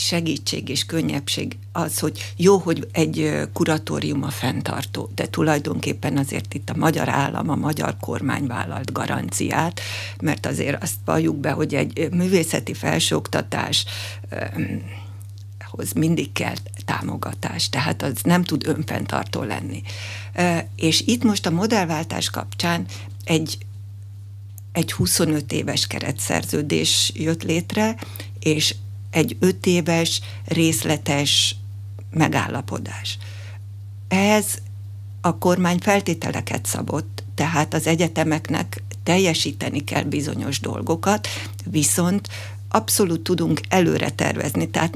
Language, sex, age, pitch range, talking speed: Hungarian, female, 60-79, 100-160 Hz, 105 wpm